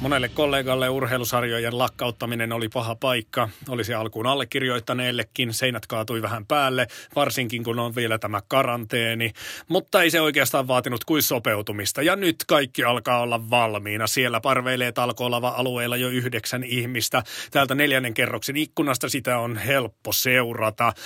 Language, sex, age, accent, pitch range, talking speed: Finnish, male, 30-49, native, 115-135 Hz, 135 wpm